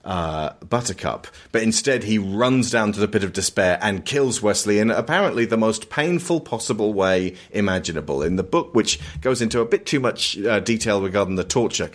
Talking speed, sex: 190 wpm, male